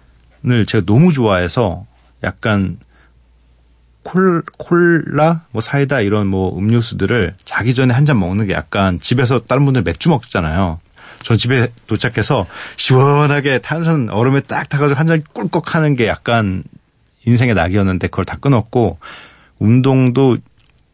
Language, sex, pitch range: Korean, male, 95-135 Hz